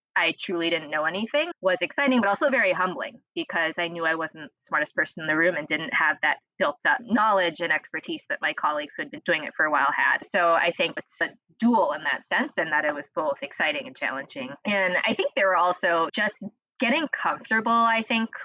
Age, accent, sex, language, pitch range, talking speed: 20-39, American, female, English, 165-215 Hz, 235 wpm